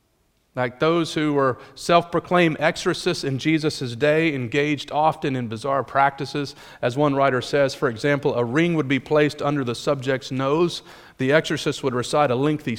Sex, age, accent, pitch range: male, 40-59, American, 110-140 Hz